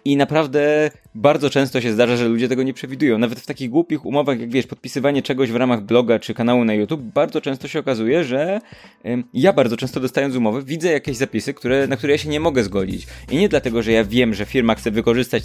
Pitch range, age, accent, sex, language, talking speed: 110-140 Hz, 20-39, native, male, Polish, 230 wpm